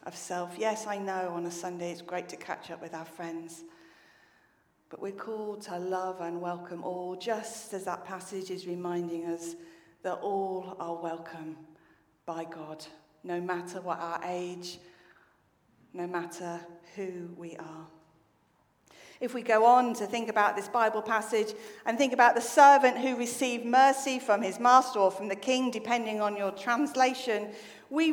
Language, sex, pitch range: English, female, 175-240 Hz